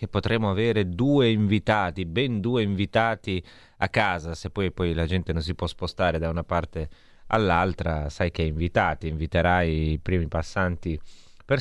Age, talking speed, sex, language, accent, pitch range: 30-49, 160 wpm, male, Italian, native, 85-100 Hz